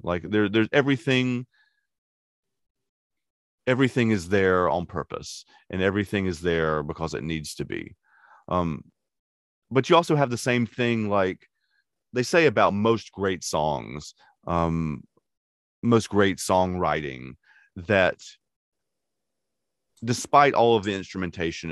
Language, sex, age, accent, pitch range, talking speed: English, male, 40-59, American, 80-105 Hz, 120 wpm